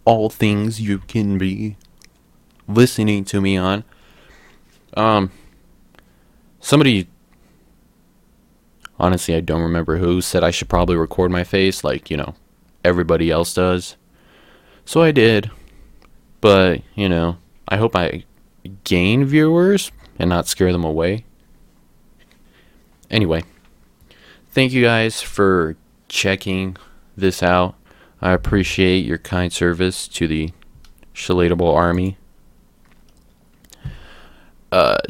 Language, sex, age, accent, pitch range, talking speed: English, male, 20-39, American, 85-105 Hz, 110 wpm